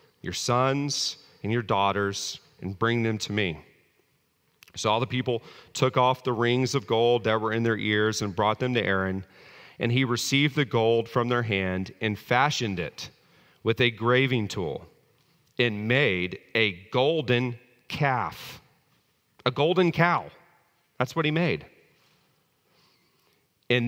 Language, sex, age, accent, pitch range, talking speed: English, male, 40-59, American, 110-135 Hz, 145 wpm